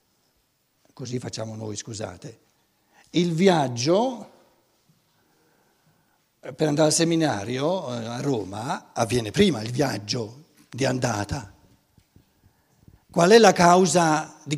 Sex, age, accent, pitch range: male, 60-79, native, 130-190 Hz